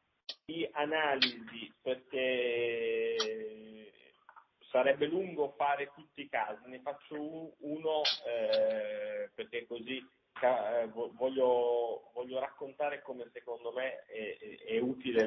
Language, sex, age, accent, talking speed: Italian, male, 40-59, native, 100 wpm